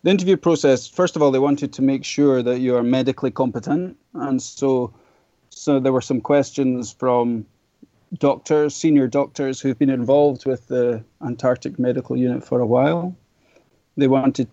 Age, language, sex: 30-49, English, male